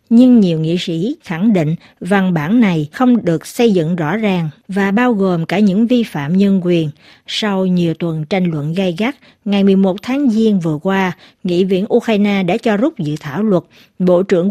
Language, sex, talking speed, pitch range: Vietnamese, female, 200 wpm, 175-225 Hz